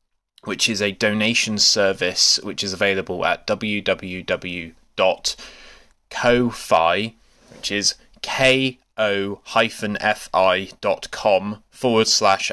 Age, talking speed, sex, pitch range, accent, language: 20-39, 75 wpm, male, 95-115 Hz, British, English